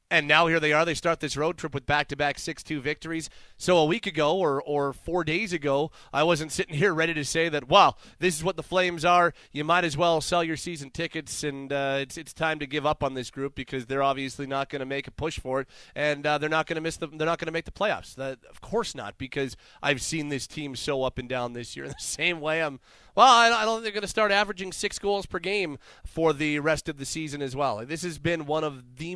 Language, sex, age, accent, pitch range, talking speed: English, male, 30-49, American, 140-175 Hz, 270 wpm